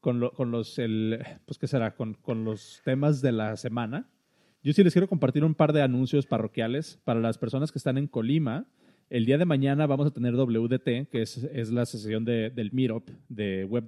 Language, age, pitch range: Spanish, 30-49, 120-150 Hz